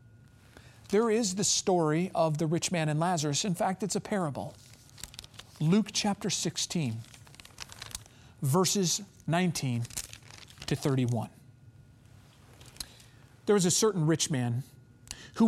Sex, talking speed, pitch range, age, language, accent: male, 110 wpm, 120-190 Hz, 40-59, English, American